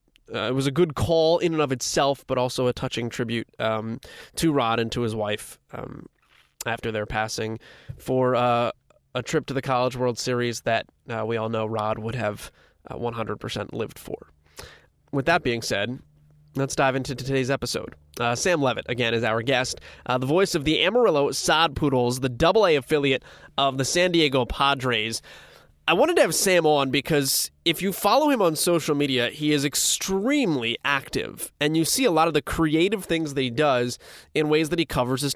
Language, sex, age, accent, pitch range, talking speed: English, male, 20-39, American, 120-145 Hz, 195 wpm